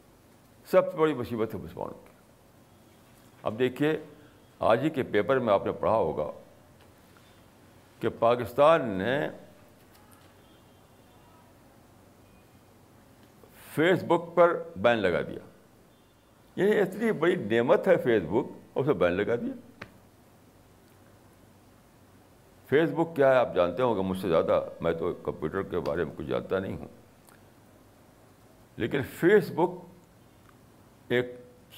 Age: 60-79